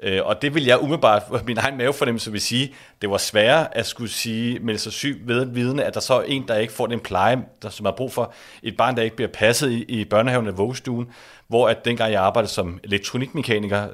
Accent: native